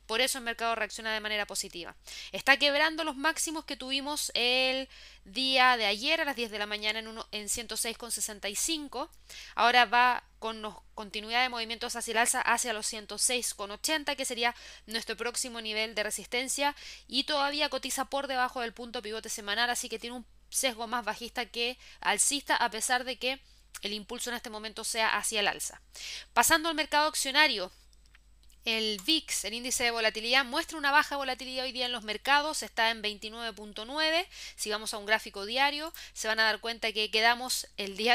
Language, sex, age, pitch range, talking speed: Spanish, female, 20-39, 215-265 Hz, 180 wpm